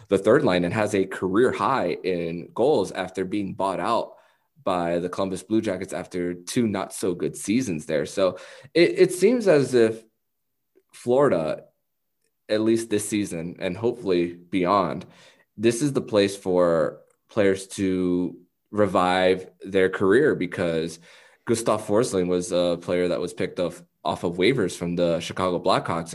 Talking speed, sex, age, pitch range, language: 155 wpm, male, 20-39, 90-110 Hz, English